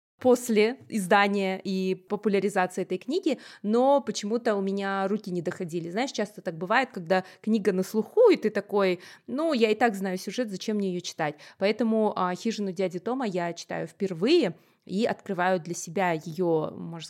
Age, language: 20-39, Russian